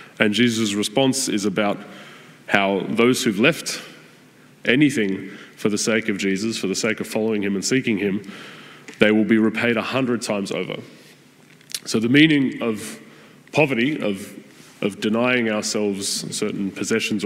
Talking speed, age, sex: 150 wpm, 20-39, male